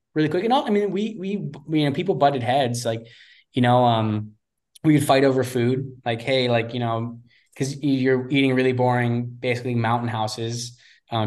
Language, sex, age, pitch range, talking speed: English, male, 20-39, 115-135 Hz, 195 wpm